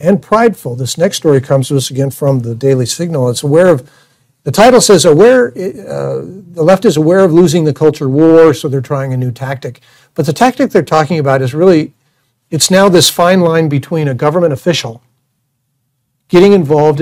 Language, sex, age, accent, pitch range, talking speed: English, male, 60-79, American, 135-175 Hz, 195 wpm